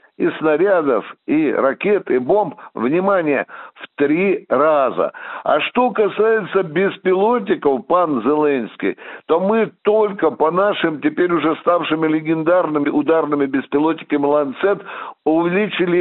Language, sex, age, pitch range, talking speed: Russian, male, 60-79, 155-215 Hz, 110 wpm